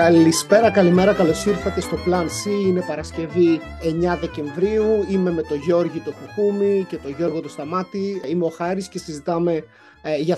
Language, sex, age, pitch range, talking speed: Greek, male, 30-49, 170-190 Hz, 160 wpm